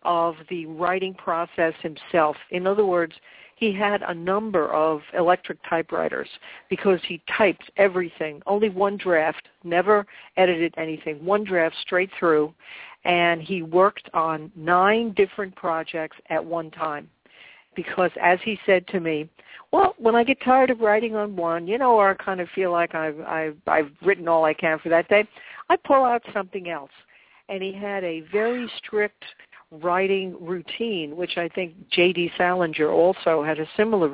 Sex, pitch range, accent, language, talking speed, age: female, 165-195 Hz, American, English, 165 wpm, 60-79